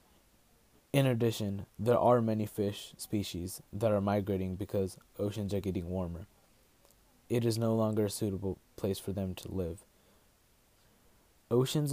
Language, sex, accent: English, male, American